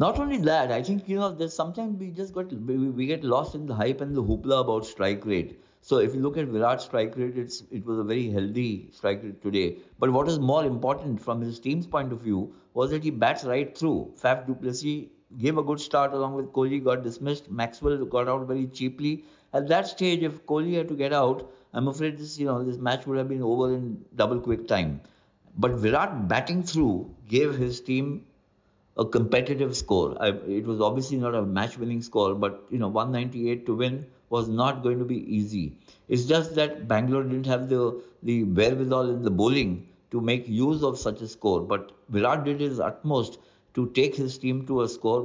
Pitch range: 115-145 Hz